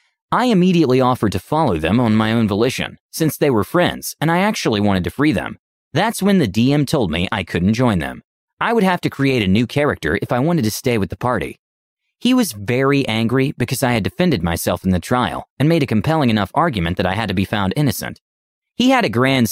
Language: English